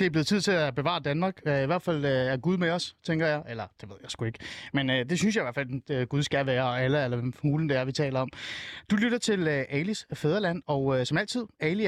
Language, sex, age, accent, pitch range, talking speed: Danish, male, 30-49, native, 140-190 Hz, 275 wpm